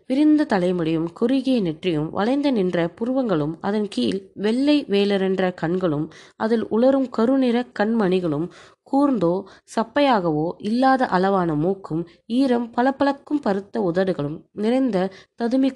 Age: 20-39